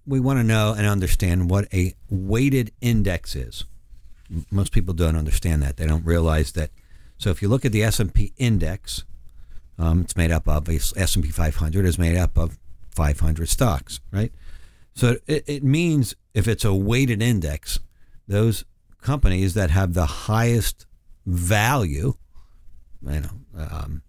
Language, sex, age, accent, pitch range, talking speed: English, male, 50-69, American, 80-110 Hz, 160 wpm